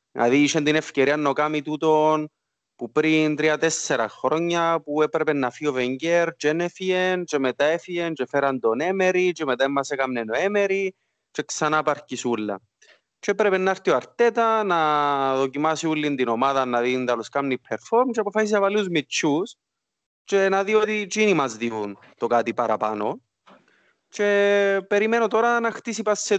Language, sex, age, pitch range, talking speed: Greek, male, 30-49, 125-195 Hz, 165 wpm